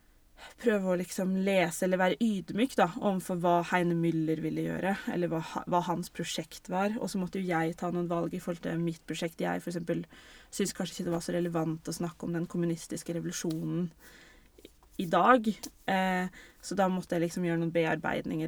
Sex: female